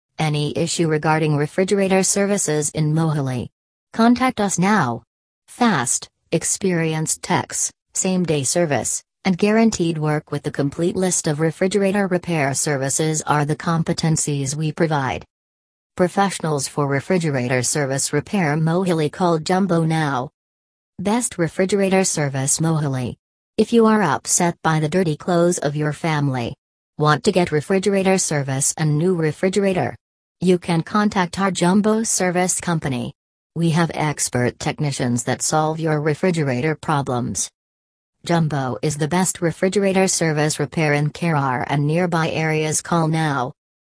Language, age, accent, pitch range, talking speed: English, 40-59, American, 145-185 Hz, 130 wpm